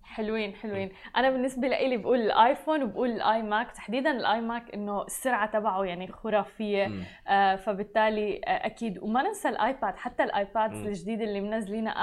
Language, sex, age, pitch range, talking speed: Arabic, female, 20-39, 220-280 Hz, 140 wpm